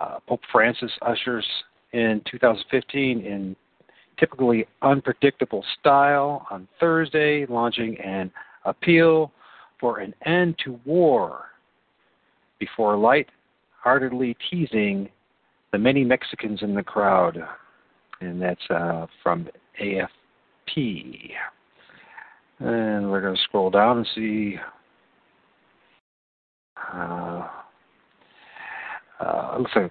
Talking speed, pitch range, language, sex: 85 wpm, 100-140 Hz, English, male